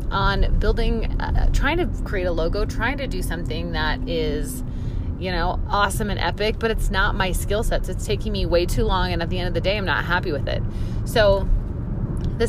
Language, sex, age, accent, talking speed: English, female, 30-49, American, 215 wpm